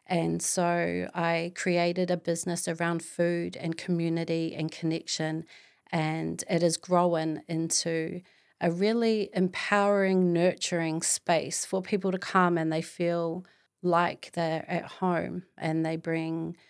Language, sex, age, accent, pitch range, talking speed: English, female, 30-49, Australian, 170-195 Hz, 130 wpm